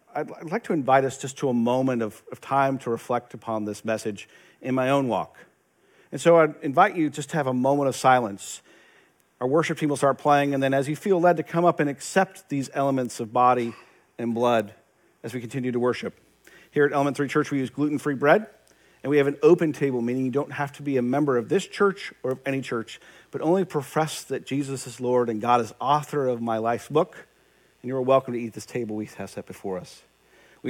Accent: American